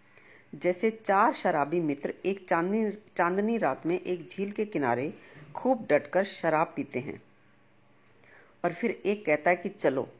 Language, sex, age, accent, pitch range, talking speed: Hindi, female, 50-69, native, 160-205 Hz, 145 wpm